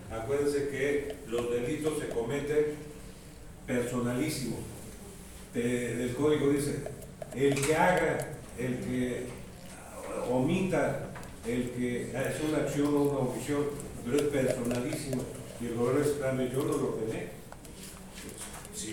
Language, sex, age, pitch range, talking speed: Spanish, male, 40-59, 115-145 Hz, 125 wpm